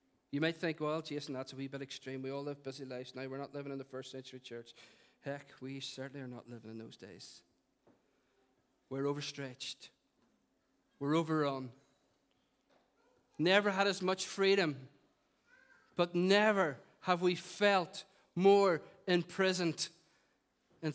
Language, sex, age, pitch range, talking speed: English, male, 40-59, 135-175 Hz, 145 wpm